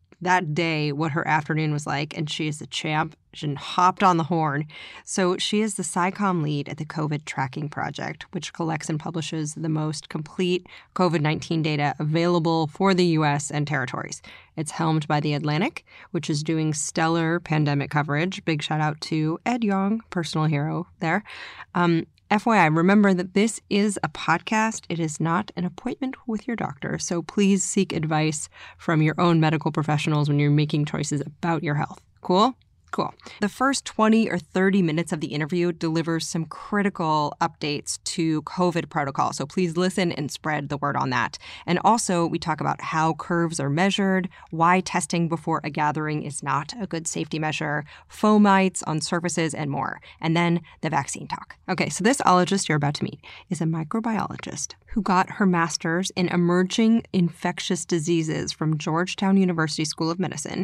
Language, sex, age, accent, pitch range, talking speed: English, female, 20-39, American, 155-185 Hz, 175 wpm